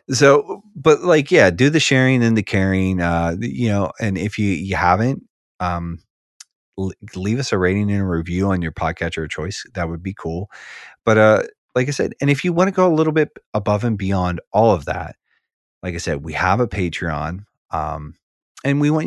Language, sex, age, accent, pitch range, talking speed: English, male, 30-49, American, 85-110 Hz, 210 wpm